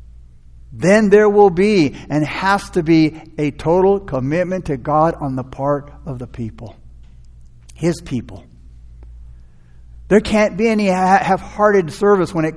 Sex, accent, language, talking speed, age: male, American, English, 140 wpm, 60-79